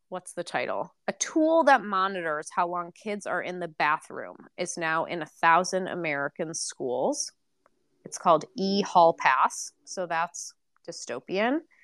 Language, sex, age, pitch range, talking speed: English, female, 20-39, 170-210 Hz, 140 wpm